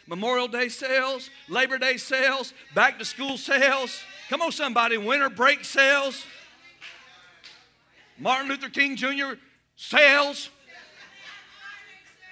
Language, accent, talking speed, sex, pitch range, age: English, American, 95 wpm, male, 255-315 Hz, 50-69